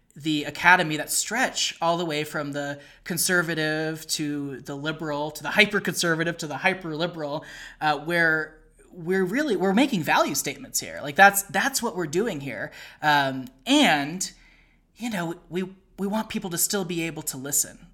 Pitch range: 150-185 Hz